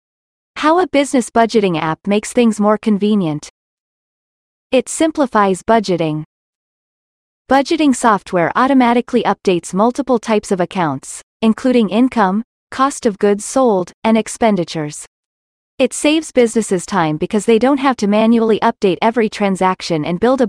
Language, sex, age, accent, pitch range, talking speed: English, female, 30-49, American, 185-245 Hz, 130 wpm